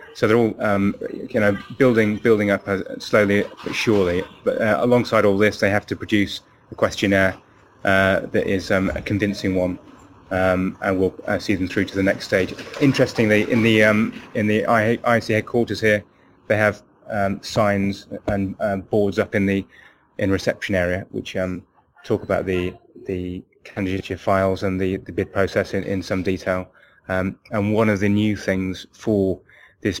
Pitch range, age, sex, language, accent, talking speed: 95-105 Hz, 20-39, male, English, British, 180 wpm